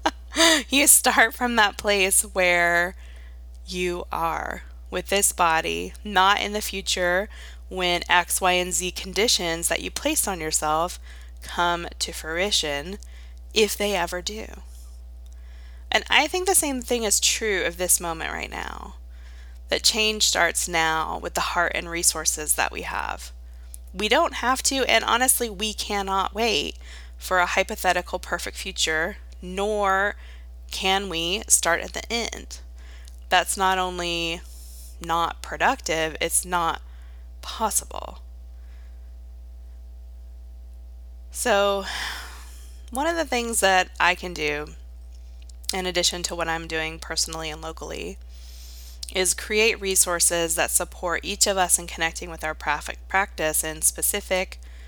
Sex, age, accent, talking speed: female, 20-39, American, 130 wpm